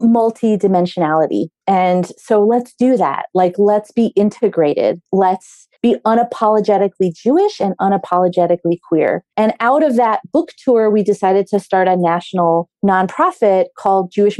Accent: American